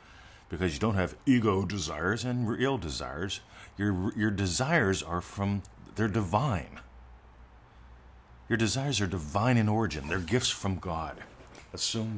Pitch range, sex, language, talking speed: 80-115 Hz, male, English, 135 wpm